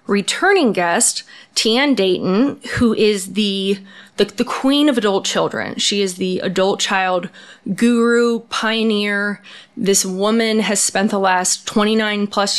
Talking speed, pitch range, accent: 135 wpm, 190-225 Hz, American